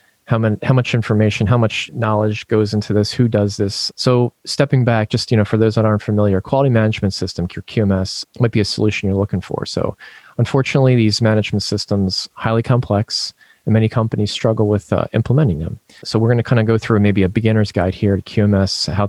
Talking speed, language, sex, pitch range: 210 wpm, English, male, 95-115 Hz